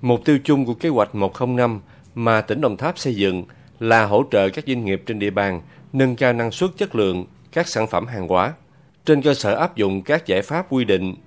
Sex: male